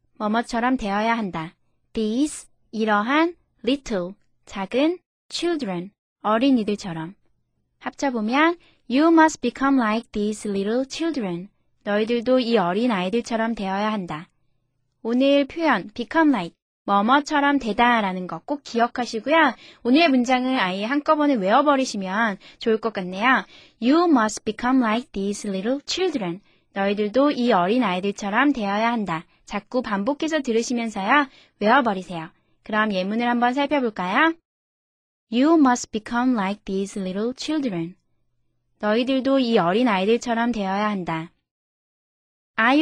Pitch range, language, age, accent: 195-265 Hz, Korean, 20-39, native